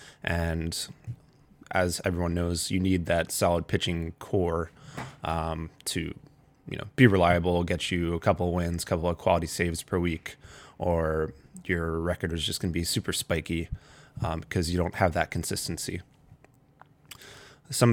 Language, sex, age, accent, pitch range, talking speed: English, male, 20-39, American, 85-105 Hz, 155 wpm